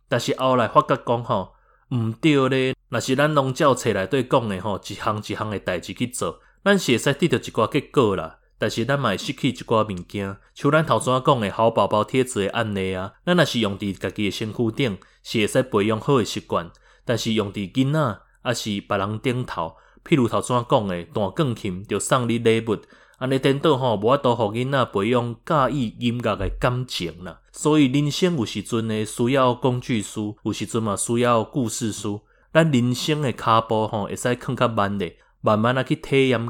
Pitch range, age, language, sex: 105-130 Hz, 20-39, Chinese, male